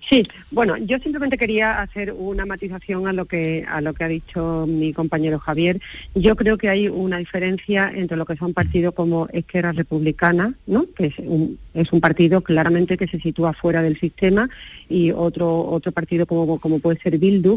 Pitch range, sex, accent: 160-195 Hz, female, Spanish